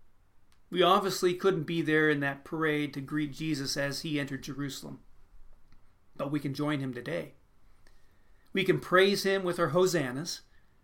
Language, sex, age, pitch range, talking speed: English, male, 40-59, 130-155 Hz, 155 wpm